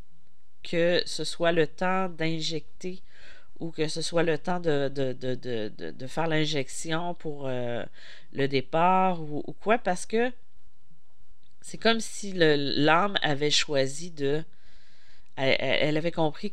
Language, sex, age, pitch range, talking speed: French, female, 40-59, 145-175 Hz, 130 wpm